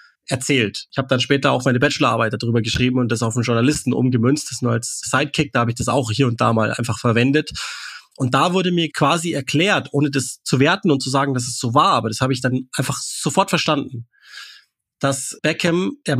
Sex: male